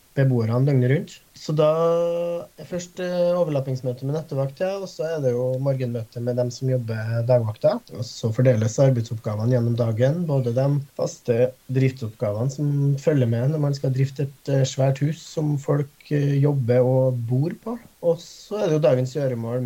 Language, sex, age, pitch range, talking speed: English, male, 20-39, 120-150 Hz, 175 wpm